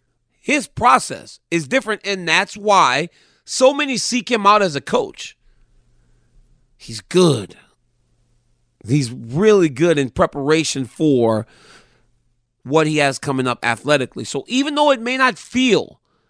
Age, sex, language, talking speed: 40-59, male, English, 135 wpm